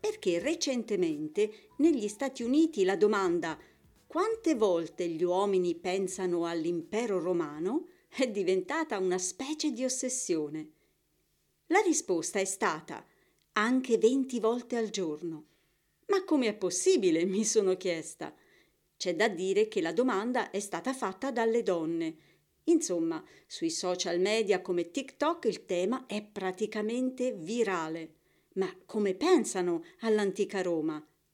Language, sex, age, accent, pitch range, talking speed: Italian, female, 50-69, native, 180-300 Hz, 120 wpm